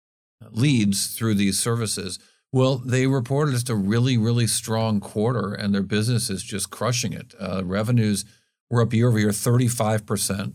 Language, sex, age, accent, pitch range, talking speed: English, male, 50-69, American, 105-130 Hz, 170 wpm